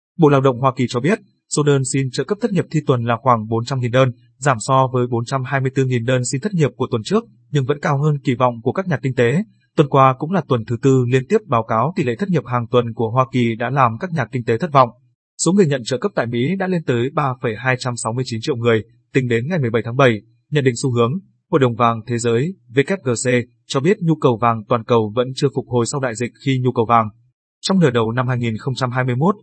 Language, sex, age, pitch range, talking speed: Vietnamese, male, 20-39, 120-140 Hz, 250 wpm